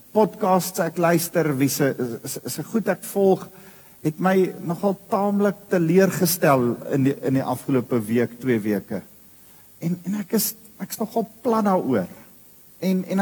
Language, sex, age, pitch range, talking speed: English, male, 50-69, 130-190 Hz, 125 wpm